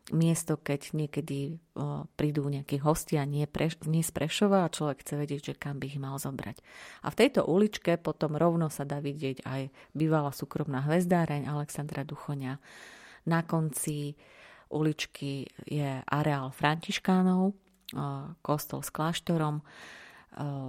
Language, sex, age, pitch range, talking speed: Slovak, female, 30-49, 140-160 Hz, 130 wpm